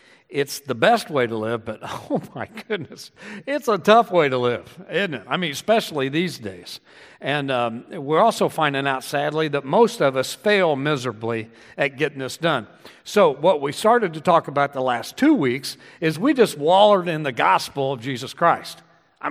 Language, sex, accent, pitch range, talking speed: English, male, American, 135-185 Hz, 195 wpm